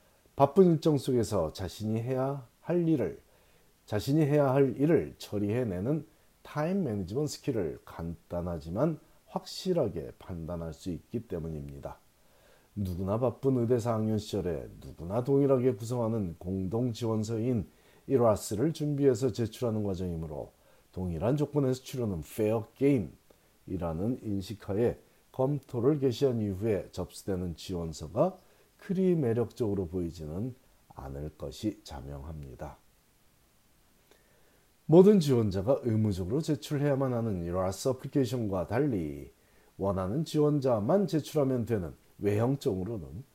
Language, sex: Korean, male